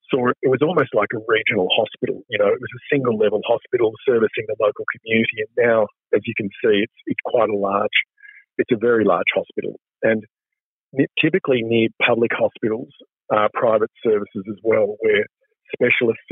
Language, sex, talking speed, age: English, male, 175 wpm, 50-69